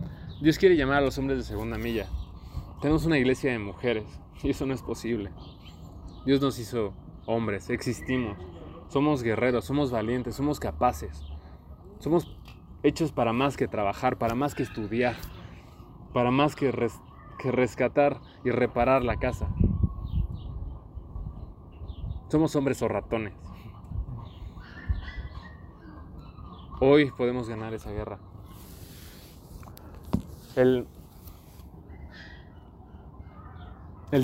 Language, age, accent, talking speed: Spanish, 20-39, Mexican, 105 wpm